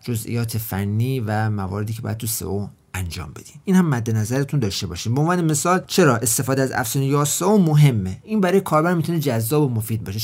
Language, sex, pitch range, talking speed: Persian, male, 115-155 Hz, 195 wpm